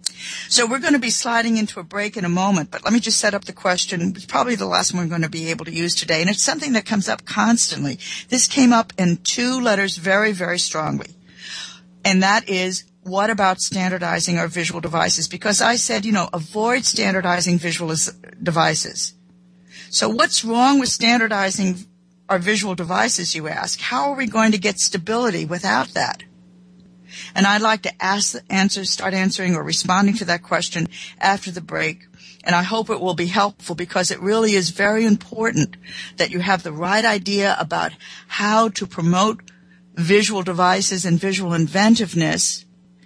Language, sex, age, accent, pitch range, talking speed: English, female, 60-79, American, 175-210 Hz, 185 wpm